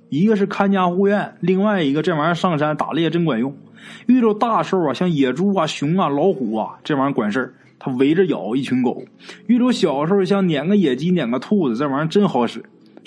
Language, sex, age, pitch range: Chinese, male, 20-39, 160-225 Hz